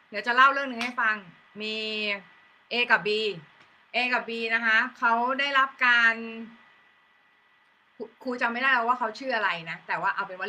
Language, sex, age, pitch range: Thai, female, 20-39, 225-260 Hz